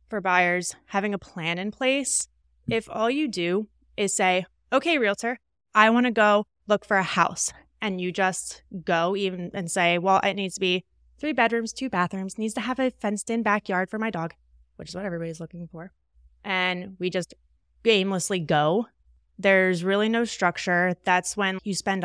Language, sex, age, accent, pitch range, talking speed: English, female, 20-39, American, 170-205 Hz, 185 wpm